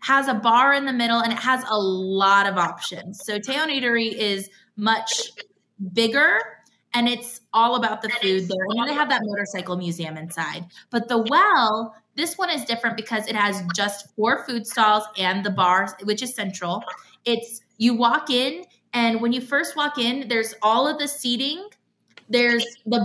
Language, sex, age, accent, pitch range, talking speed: English, female, 20-39, American, 205-265 Hz, 180 wpm